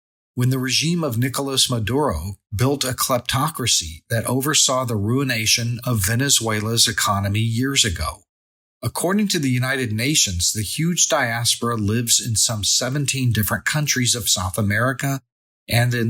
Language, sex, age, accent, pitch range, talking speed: English, male, 40-59, American, 105-130 Hz, 140 wpm